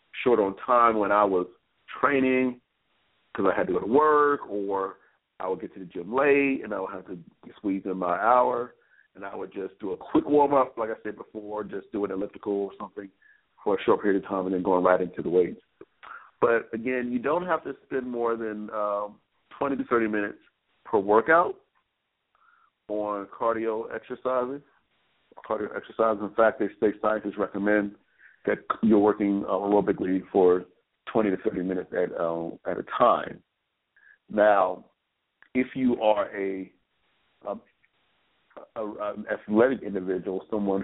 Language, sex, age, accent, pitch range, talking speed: English, male, 40-59, American, 100-125 Hz, 165 wpm